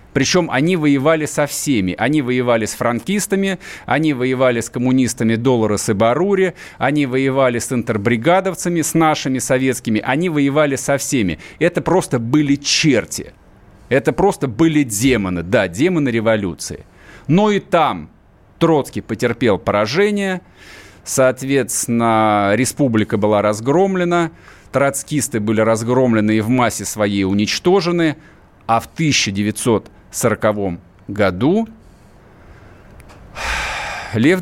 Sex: male